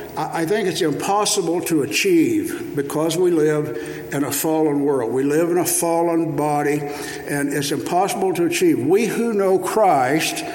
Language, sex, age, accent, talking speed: English, male, 60-79, American, 160 wpm